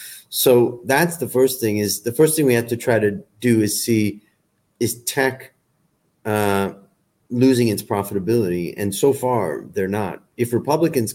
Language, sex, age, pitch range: Thai, male, 40-59, 100-130 Hz